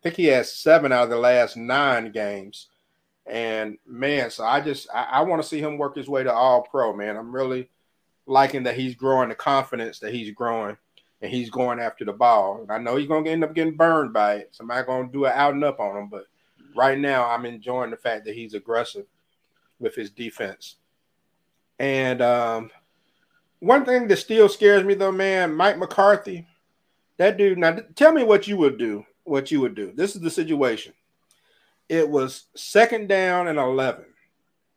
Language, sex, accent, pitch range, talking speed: English, male, American, 125-185 Hz, 195 wpm